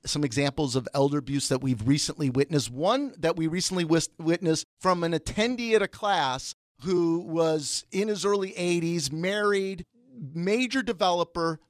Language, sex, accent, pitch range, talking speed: English, male, American, 165-220 Hz, 150 wpm